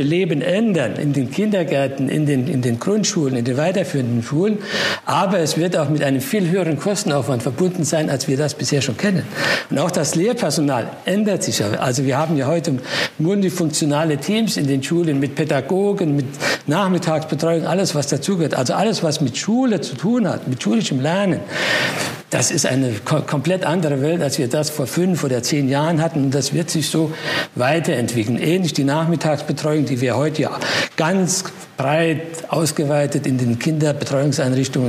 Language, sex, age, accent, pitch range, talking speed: German, male, 60-79, German, 140-175 Hz, 170 wpm